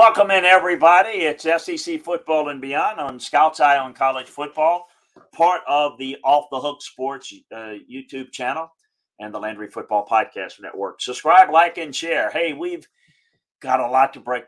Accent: American